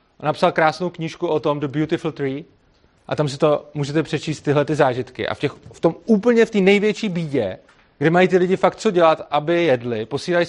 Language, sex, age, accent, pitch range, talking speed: Czech, male, 30-49, native, 145-185 Hz, 215 wpm